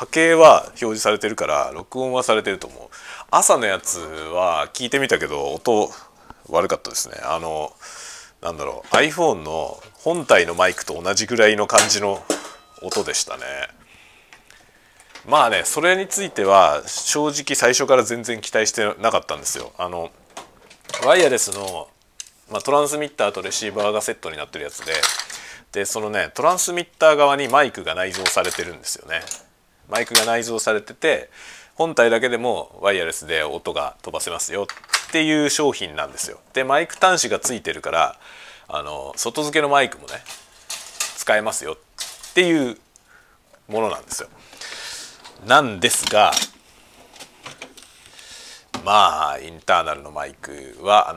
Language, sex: Japanese, male